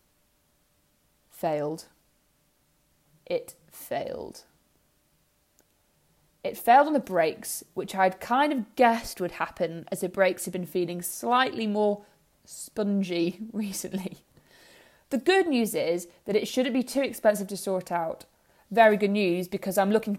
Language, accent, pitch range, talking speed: English, British, 170-220 Hz, 130 wpm